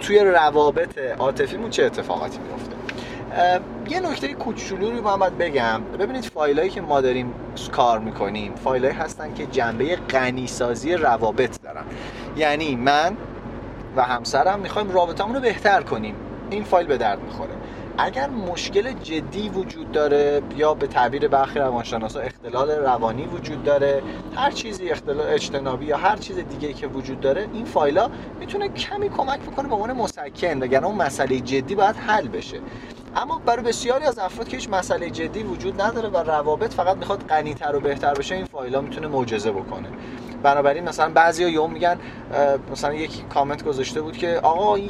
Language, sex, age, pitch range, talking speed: Persian, male, 30-49, 135-195 Hz, 160 wpm